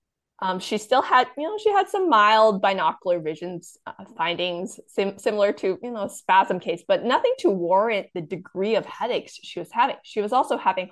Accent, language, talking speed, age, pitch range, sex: American, English, 190 wpm, 20-39, 195-275 Hz, female